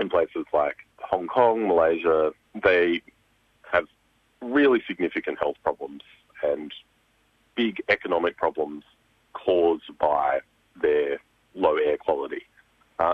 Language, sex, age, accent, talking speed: English, male, 30-49, Australian, 105 wpm